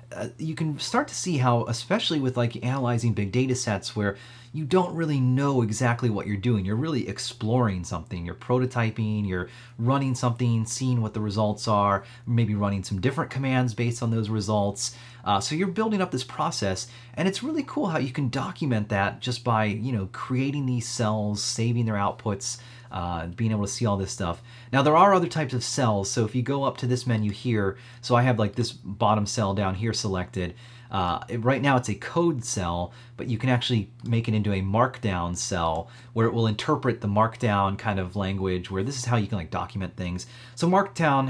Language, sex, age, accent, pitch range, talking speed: English, male, 30-49, American, 100-125 Hz, 210 wpm